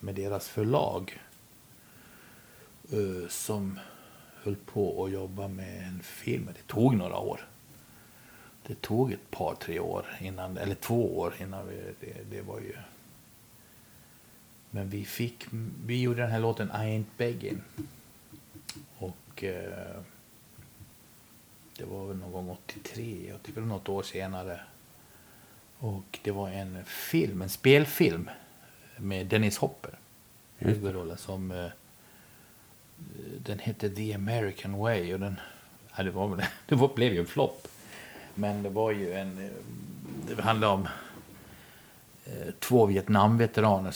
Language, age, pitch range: Swedish, 60-79, 95-110 Hz